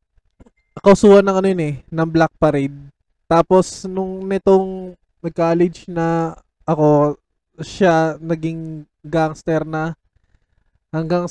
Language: Filipino